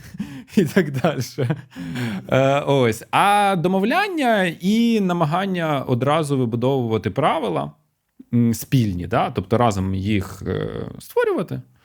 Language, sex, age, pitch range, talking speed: Ukrainian, male, 30-49, 105-150 Hz, 85 wpm